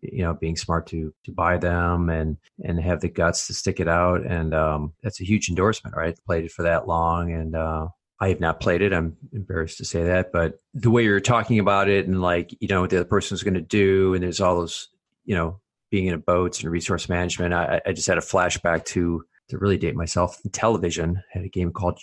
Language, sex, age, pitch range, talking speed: English, male, 30-49, 85-100 Hz, 240 wpm